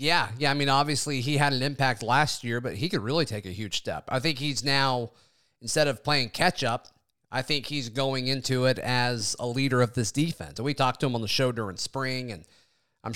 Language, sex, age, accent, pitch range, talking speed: English, male, 30-49, American, 125-150 Hz, 235 wpm